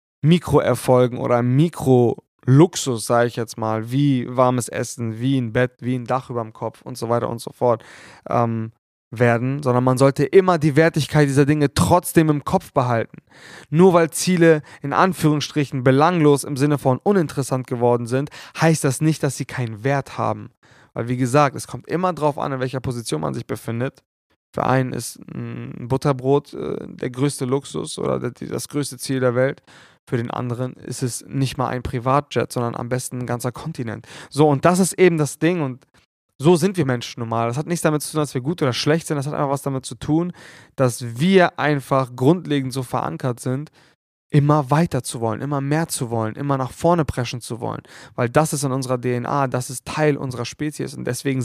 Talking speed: 195 wpm